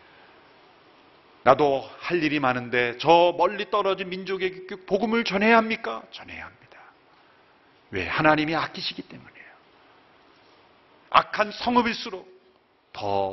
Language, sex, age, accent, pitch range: Korean, male, 40-59, native, 110-180 Hz